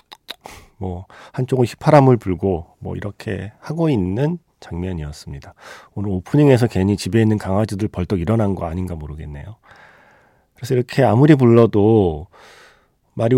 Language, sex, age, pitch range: Korean, male, 40-59, 90-125 Hz